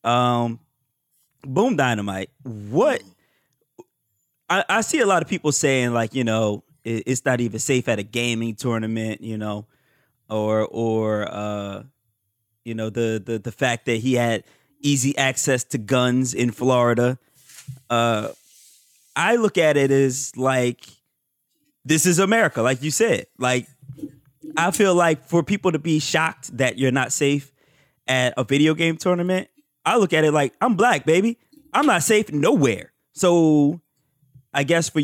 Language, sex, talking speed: English, male, 155 wpm